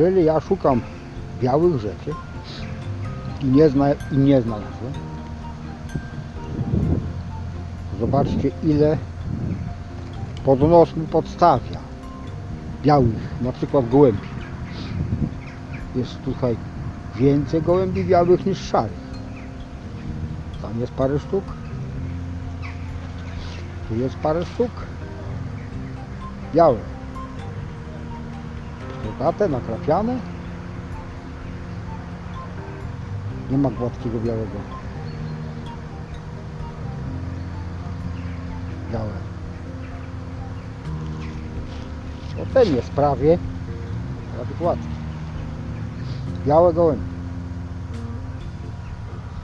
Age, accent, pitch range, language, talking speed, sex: 50-69, Polish, 85-120 Hz, English, 60 wpm, male